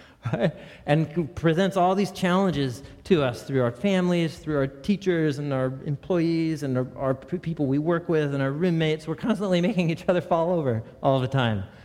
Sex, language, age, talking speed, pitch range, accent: male, English, 40-59, 180 wpm, 130-195 Hz, American